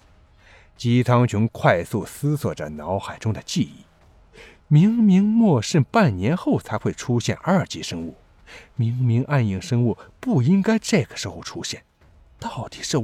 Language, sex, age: Chinese, male, 50-69